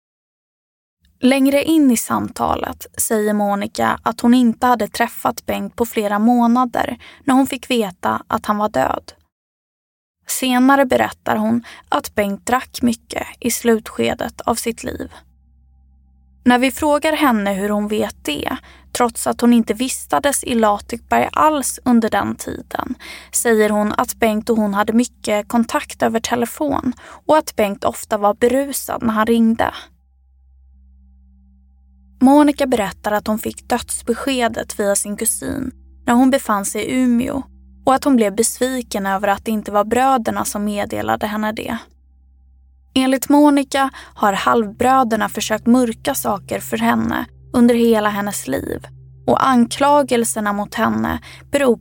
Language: Swedish